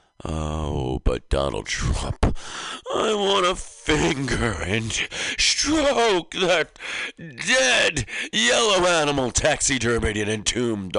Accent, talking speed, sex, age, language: American, 85 wpm, male, 60-79, English